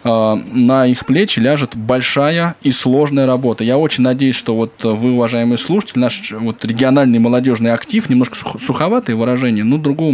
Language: Russian